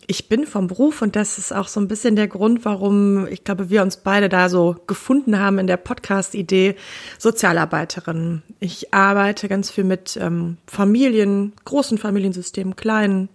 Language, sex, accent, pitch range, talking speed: German, female, German, 190-215 Hz, 165 wpm